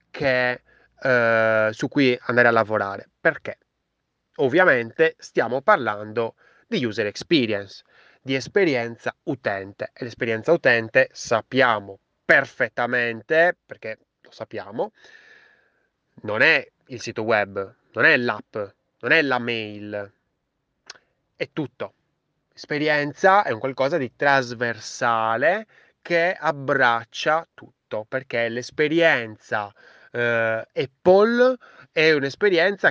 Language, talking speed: Italian, 95 wpm